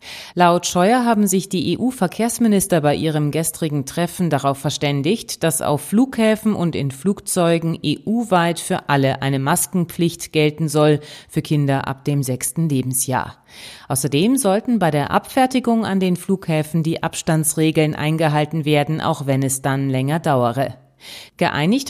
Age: 30-49